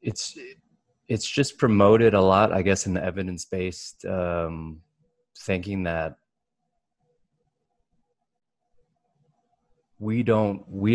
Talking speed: 95 wpm